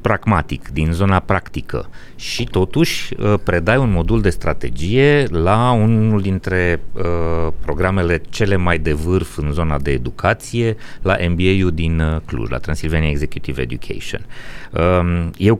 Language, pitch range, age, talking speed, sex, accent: Romanian, 80-105 Hz, 30-49, 130 wpm, male, native